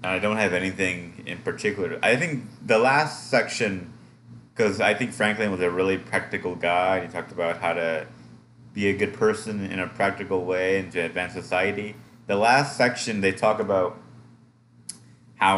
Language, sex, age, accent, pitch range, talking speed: English, male, 30-49, American, 90-120 Hz, 170 wpm